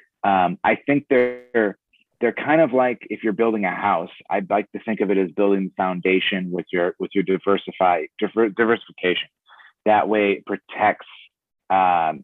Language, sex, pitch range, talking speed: English, male, 95-110 Hz, 170 wpm